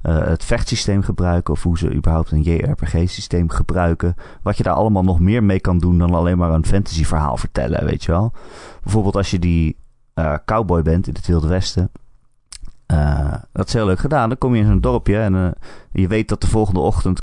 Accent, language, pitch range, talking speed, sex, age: Dutch, Dutch, 85-110 Hz, 210 wpm, male, 30-49